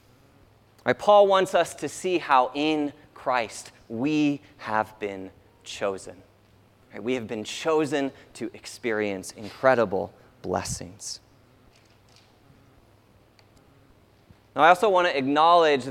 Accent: American